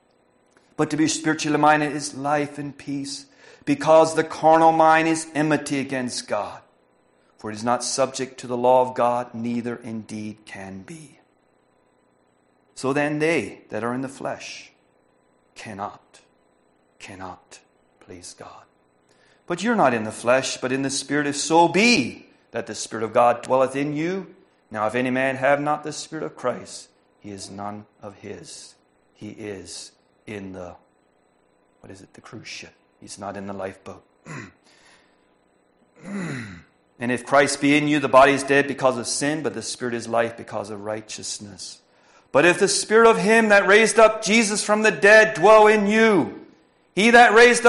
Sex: male